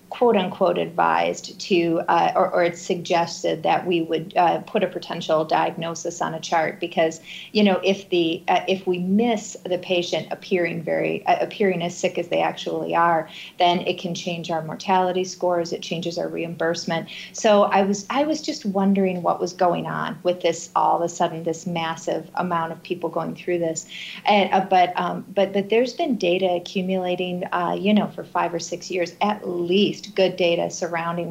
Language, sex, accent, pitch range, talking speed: English, female, American, 170-195 Hz, 190 wpm